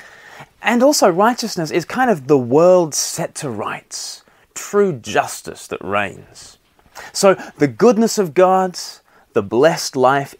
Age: 30-49